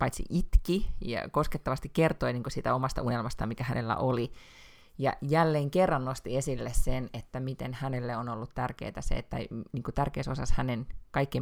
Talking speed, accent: 160 wpm, native